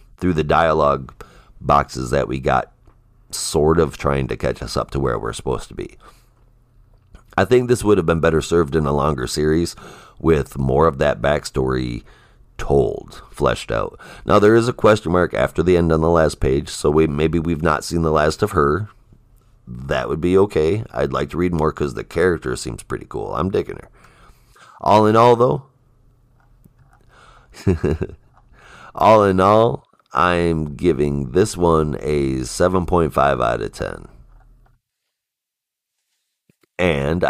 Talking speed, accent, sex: 155 wpm, American, male